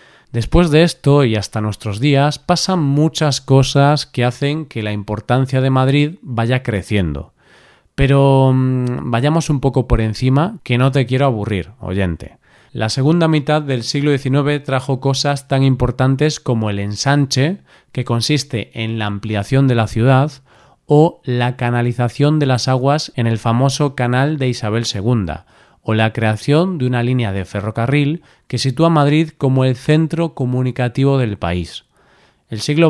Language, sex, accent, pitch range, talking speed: Spanish, male, Spanish, 115-145 Hz, 155 wpm